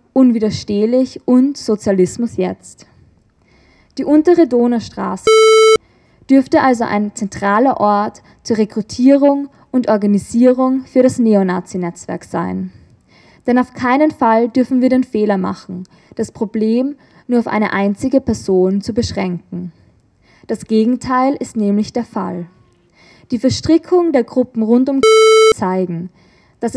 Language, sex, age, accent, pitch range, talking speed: German, female, 20-39, German, 205-255 Hz, 115 wpm